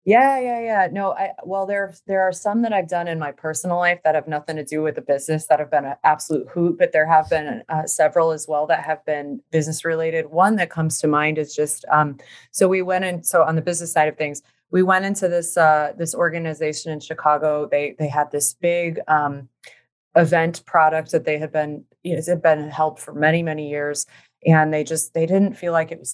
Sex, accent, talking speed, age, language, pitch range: female, American, 235 wpm, 20-39, English, 150-170 Hz